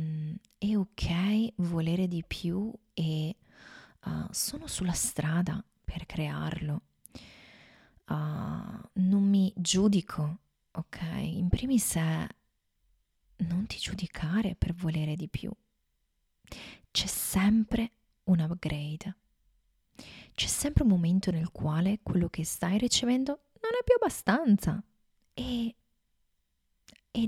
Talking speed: 105 wpm